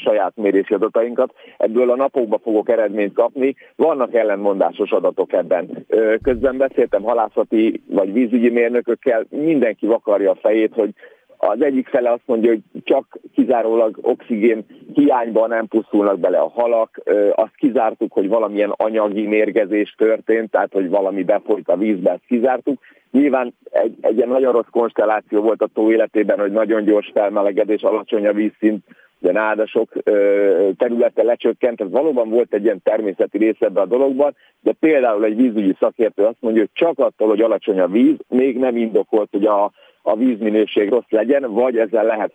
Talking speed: 160 wpm